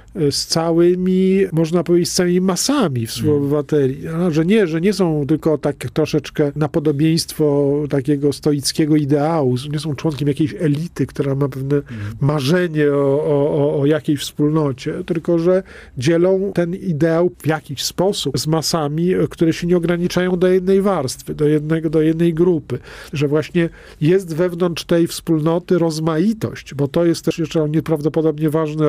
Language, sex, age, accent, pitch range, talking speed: Polish, male, 50-69, native, 145-165 Hz, 145 wpm